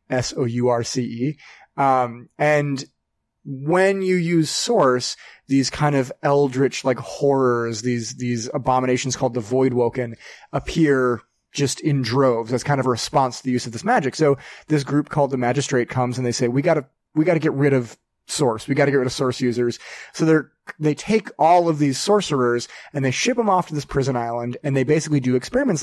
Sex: male